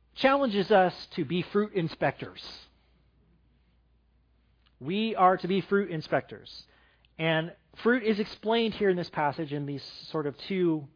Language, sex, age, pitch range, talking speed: English, male, 40-59, 135-190 Hz, 135 wpm